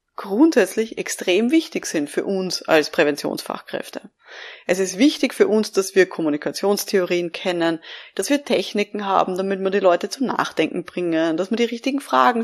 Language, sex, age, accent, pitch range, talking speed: German, female, 20-39, German, 175-215 Hz, 160 wpm